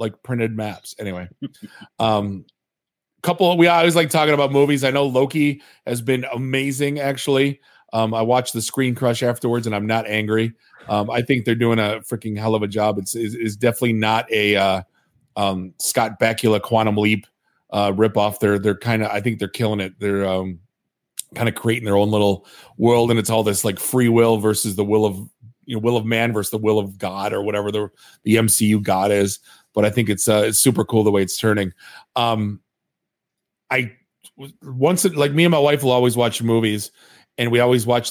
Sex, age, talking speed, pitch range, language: male, 30-49, 205 wpm, 105-130 Hz, English